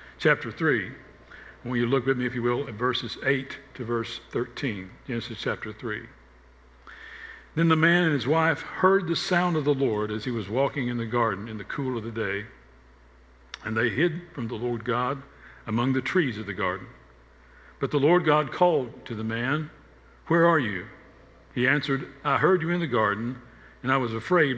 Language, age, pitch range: English, 60-79, 105-145 Hz